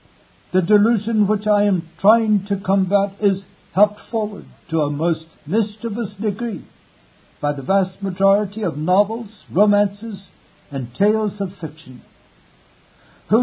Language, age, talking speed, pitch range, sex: English, 60-79, 125 wpm, 165-210 Hz, male